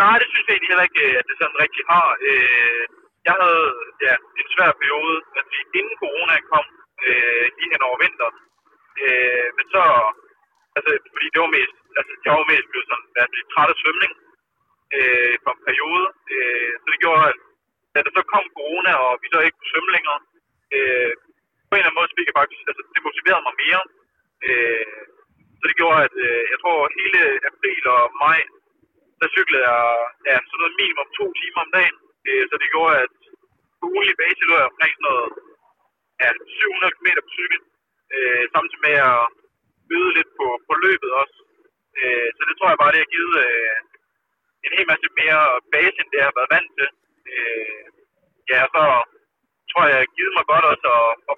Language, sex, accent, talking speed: Danish, male, native, 175 wpm